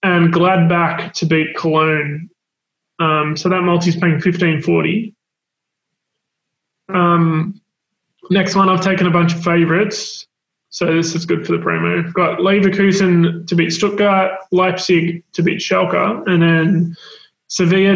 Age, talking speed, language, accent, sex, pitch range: 20-39, 130 wpm, English, Australian, male, 165-185 Hz